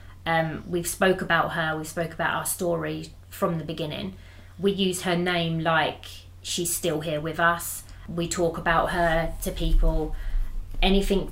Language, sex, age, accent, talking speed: English, female, 30-49, British, 160 wpm